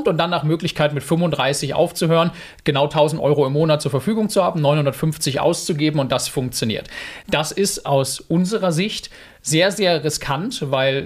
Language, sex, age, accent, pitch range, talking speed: German, male, 30-49, German, 140-175 Hz, 165 wpm